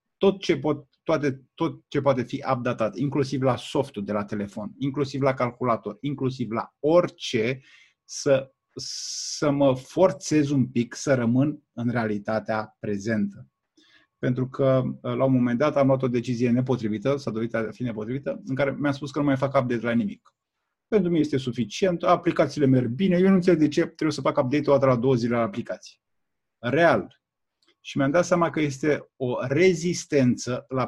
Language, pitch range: Romanian, 125-160 Hz